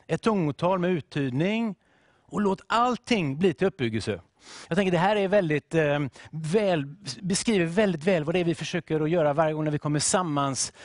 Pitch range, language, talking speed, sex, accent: 145-195 Hz, English, 190 wpm, male, Swedish